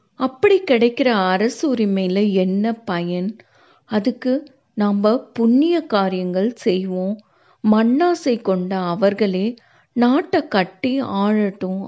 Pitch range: 190-265 Hz